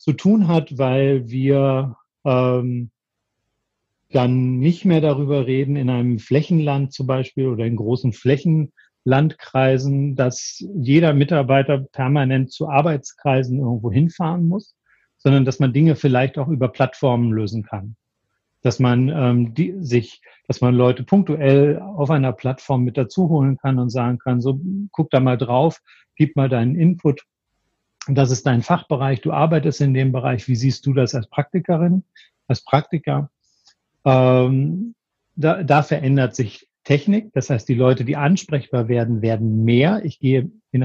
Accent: German